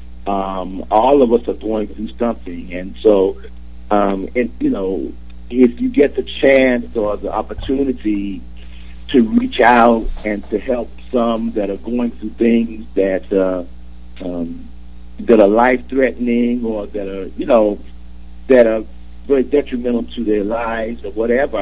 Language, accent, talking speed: English, American, 140 wpm